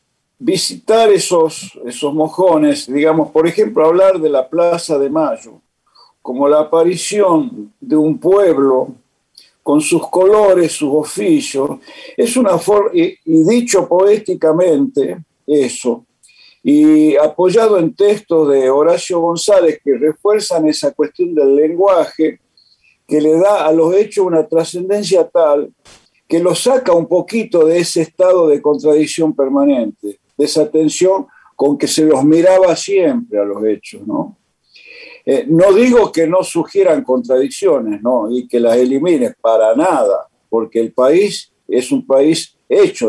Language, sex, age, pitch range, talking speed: Spanish, male, 50-69, 145-205 Hz, 135 wpm